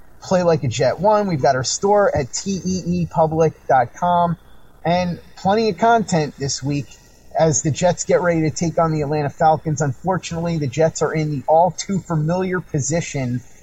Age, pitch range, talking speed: 30-49, 145-170 Hz, 175 wpm